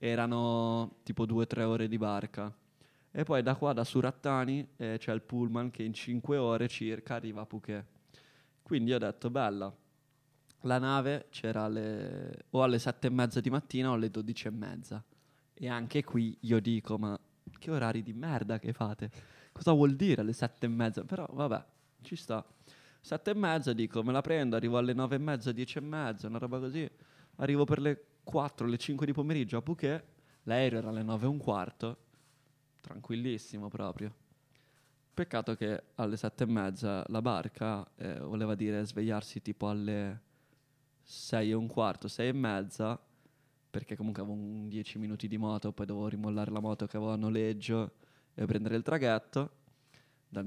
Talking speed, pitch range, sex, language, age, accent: 175 wpm, 110-140 Hz, male, Italian, 20-39, native